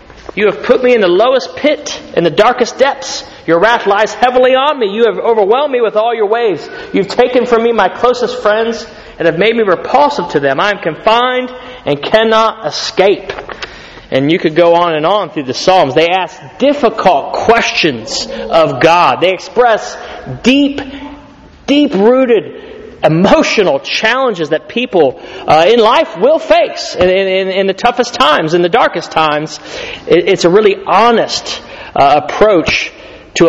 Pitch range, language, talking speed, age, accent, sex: 175-255 Hz, English, 165 wpm, 30-49, American, male